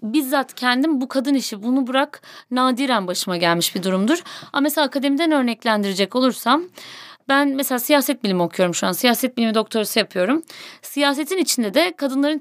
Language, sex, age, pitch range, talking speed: Turkish, female, 30-49, 195-265 Hz, 155 wpm